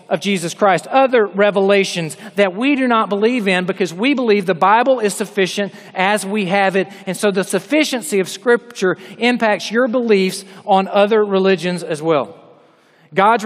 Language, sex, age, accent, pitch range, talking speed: English, male, 40-59, American, 175-215 Hz, 165 wpm